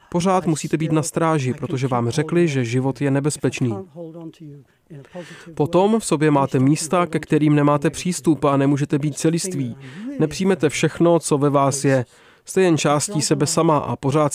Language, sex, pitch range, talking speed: Czech, male, 135-165 Hz, 155 wpm